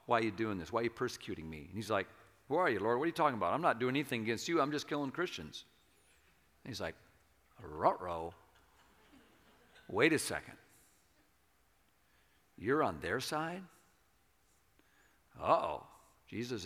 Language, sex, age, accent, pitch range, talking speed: English, male, 50-69, American, 95-120 Hz, 160 wpm